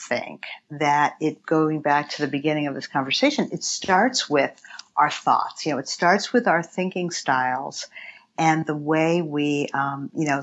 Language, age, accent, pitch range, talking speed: English, 50-69, American, 145-170 Hz, 180 wpm